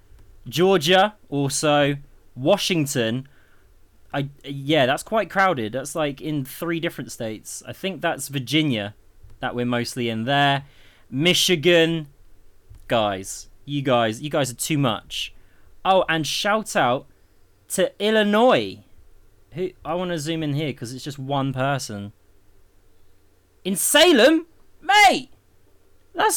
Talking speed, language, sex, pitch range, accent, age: 125 wpm, English, male, 105-175 Hz, British, 20-39